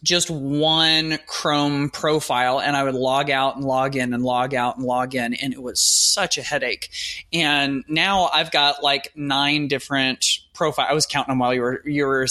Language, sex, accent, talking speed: English, male, American, 200 wpm